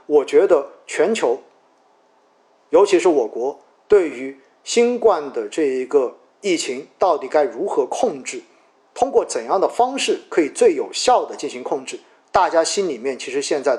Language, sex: Chinese, male